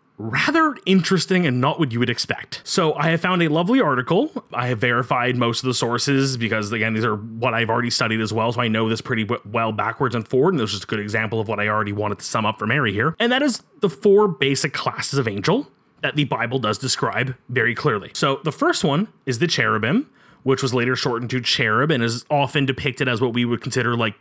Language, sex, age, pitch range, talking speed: English, male, 30-49, 125-190 Hz, 240 wpm